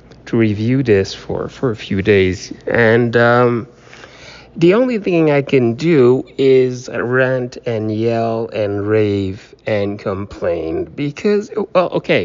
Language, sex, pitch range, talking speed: English, male, 110-155 Hz, 125 wpm